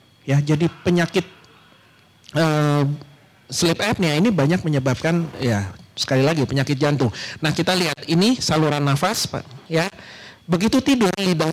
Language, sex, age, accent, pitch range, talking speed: Indonesian, male, 40-59, native, 140-195 Hz, 135 wpm